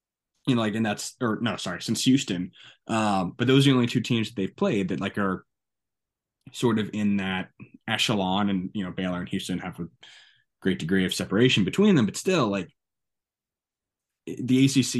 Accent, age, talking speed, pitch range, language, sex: American, 20-39, 190 wpm, 95-115 Hz, English, male